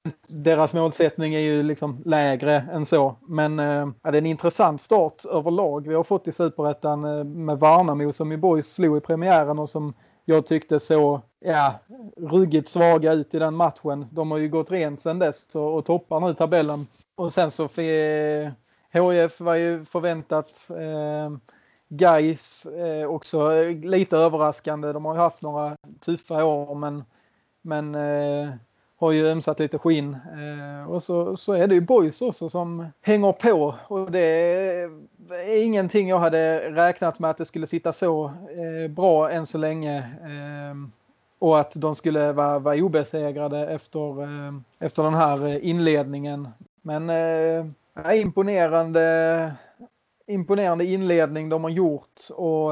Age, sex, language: 30-49, male, Swedish